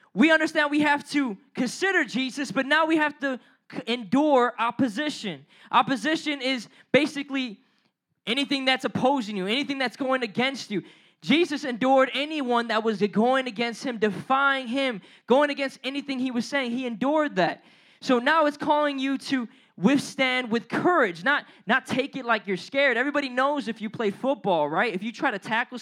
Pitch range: 215-270 Hz